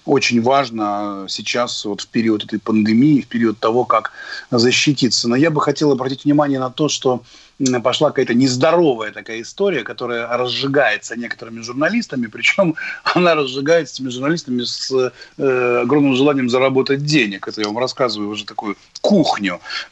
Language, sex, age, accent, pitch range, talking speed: Russian, male, 30-49, native, 115-140 Hz, 140 wpm